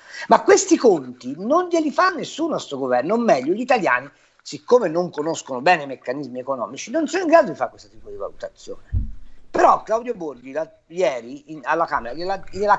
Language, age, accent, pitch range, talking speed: Italian, 50-69, native, 185-300 Hz, 190 wpm